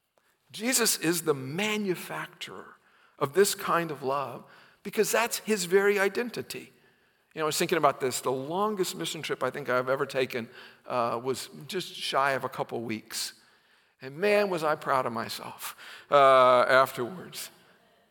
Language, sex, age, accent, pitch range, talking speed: English, male, 50-69, American, 160-215 Hz, 155 wpm